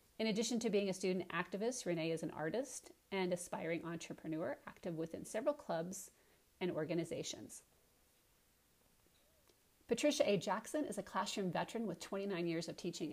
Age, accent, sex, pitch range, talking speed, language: 40-59, American, female, 170-205 Hz, 145 wpm, English